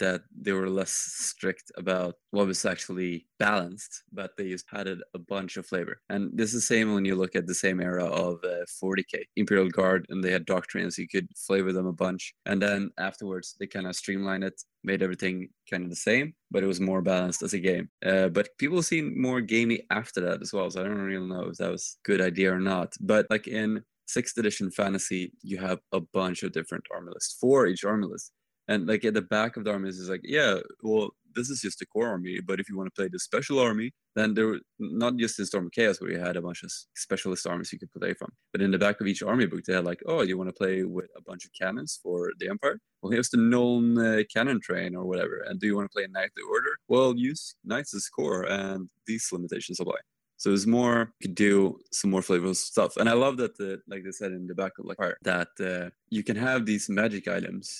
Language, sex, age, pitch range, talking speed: English, male, 20-39, 95-105 Hz, 250 wpm